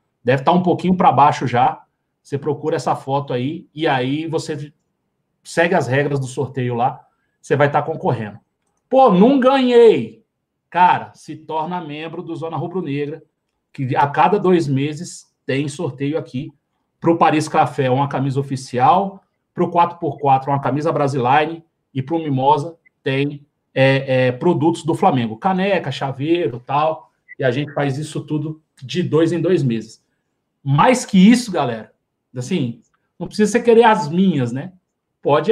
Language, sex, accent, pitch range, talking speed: Portuguese, male, Brazilian, 140-180 Hz, 155 wpm